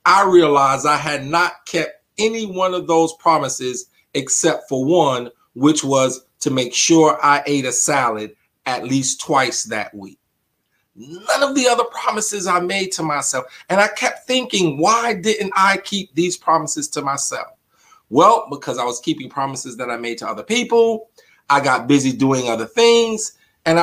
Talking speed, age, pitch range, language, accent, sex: 170 wpm, 40-59, 135-190 Hz, English, American, male